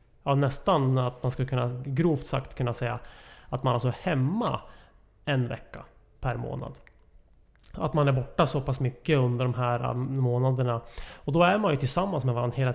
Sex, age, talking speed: male, 30-49, 185 wpm